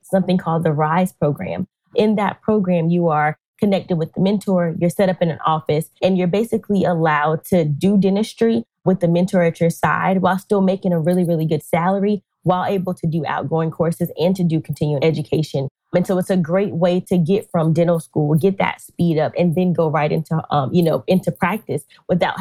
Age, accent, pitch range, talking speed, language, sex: 20-39, American, 160-185 Hz, 210 wpm, English, female